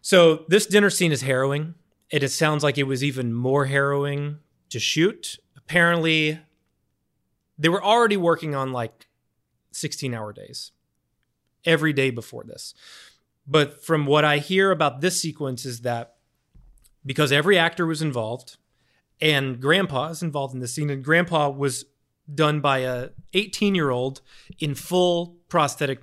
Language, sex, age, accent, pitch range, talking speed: English, male, 30-49, American, 130-165 Hz, 150 wpm